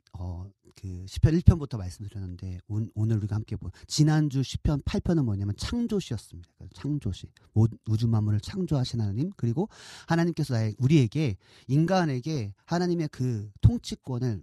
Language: Korean